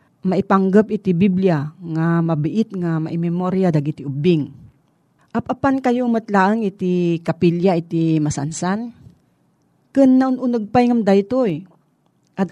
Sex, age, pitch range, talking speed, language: female, 40-59, 165-210 Hz, 115 wpm, Filipino